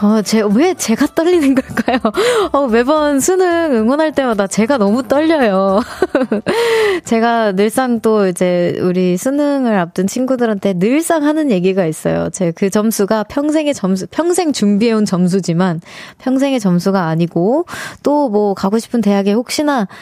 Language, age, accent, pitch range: Korean, 20-39, native, 200-265 Hz